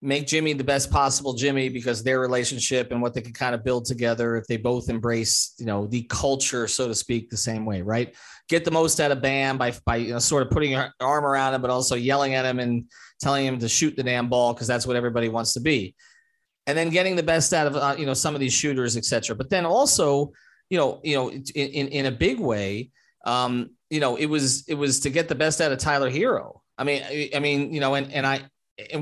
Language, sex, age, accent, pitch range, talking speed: English, male, 30-49, American, 120-155 Hz, 250 wpm